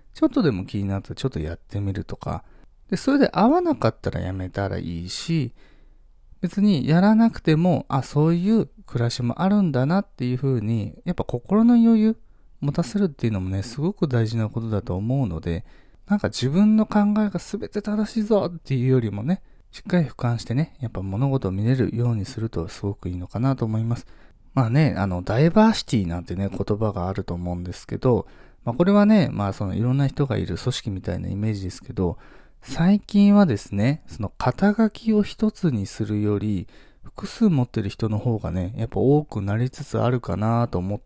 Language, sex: Japanese, male